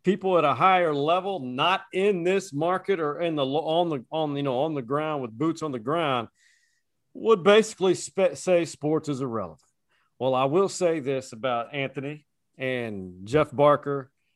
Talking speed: 170 wpm